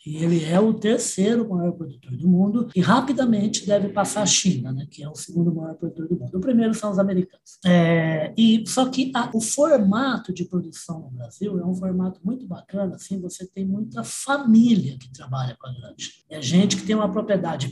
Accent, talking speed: Brazilian, 205 wpm